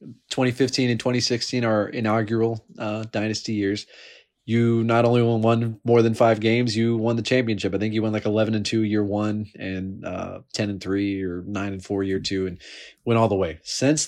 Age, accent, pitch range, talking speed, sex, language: 20-39, American, 110-145 Hz, 215 wpm, male, English